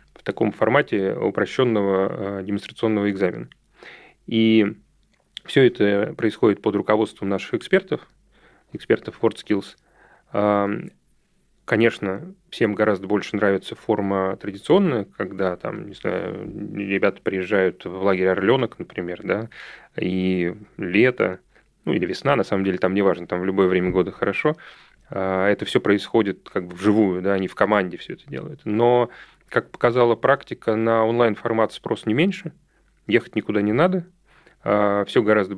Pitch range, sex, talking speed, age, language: 95-110 Hz, male, 130 wpm, 30-49, Russian